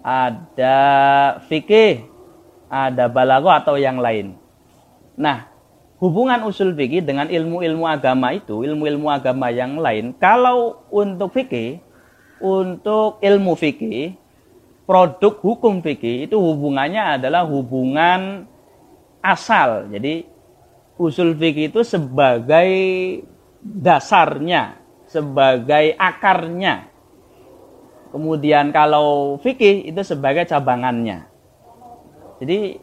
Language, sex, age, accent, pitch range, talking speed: Indonesian, male, 30-49, native, 140-190 Hz, 90 wpm